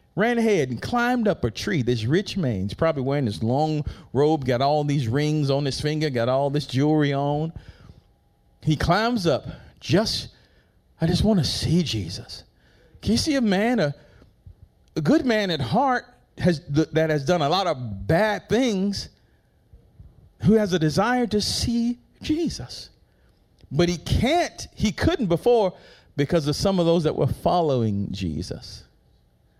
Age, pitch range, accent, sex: 40-59, 120-190 Hz, American, male